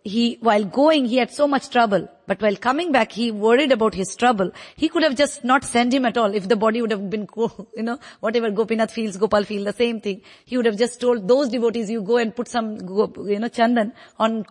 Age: 50-69